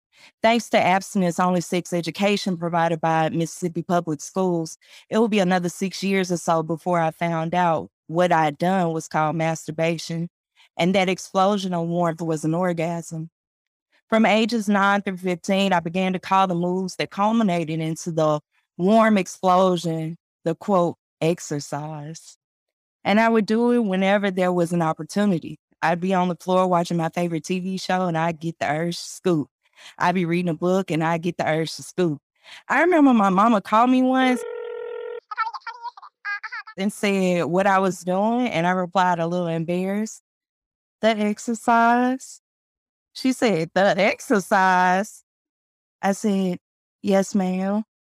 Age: 20-39